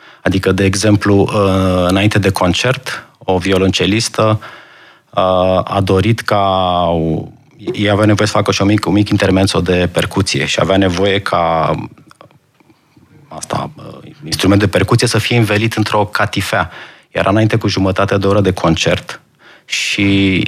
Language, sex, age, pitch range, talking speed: Romanian, male, 30-49, 95-115 Hz, 130 wpm